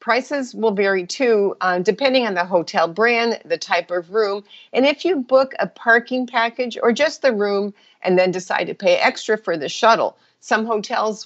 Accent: American